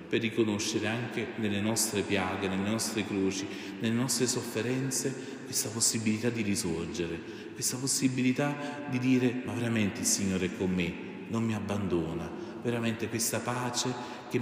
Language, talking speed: Italian, 140 wpm